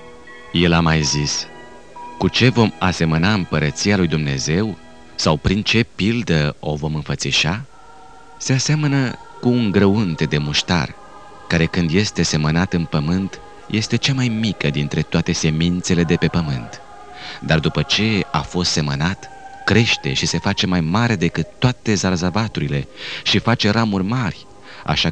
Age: 30-49